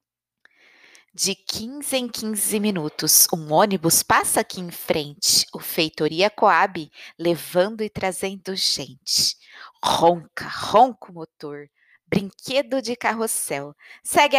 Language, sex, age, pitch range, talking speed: Portuguese, female, 20-39, 170-245 Hz, 110 wpm